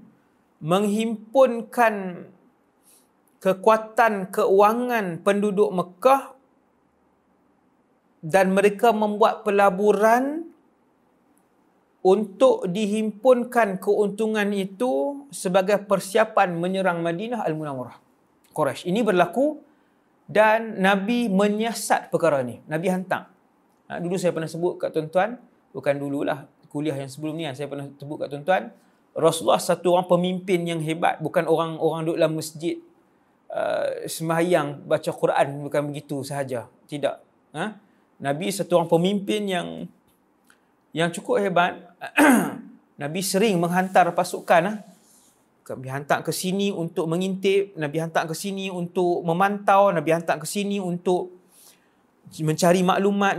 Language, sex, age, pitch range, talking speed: English, male, 40-59, 170-220 Hz, 110 wpm